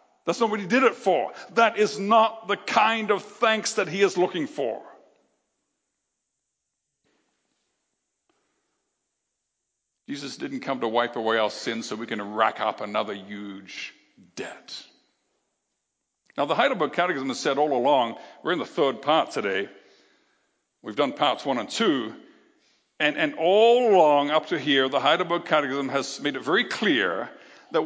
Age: 60-79